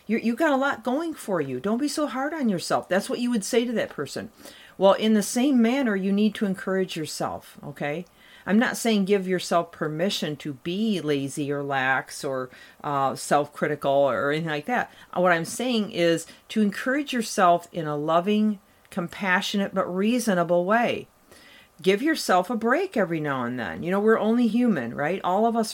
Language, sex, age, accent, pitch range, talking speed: English, female, 40-59, American, 165-220 Hz, 190 wpm